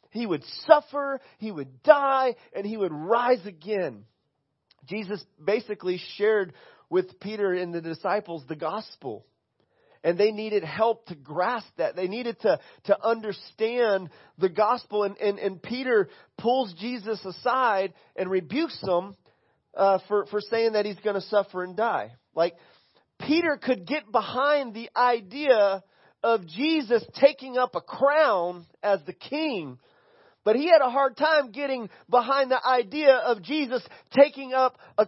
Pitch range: 190-245 Hz